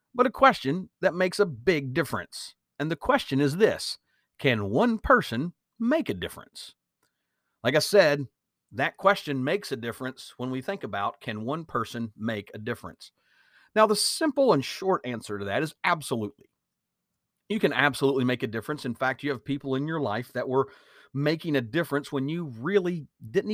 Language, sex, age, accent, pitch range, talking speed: English, male, 50-69, American, 125-175 Hz, 180 wpm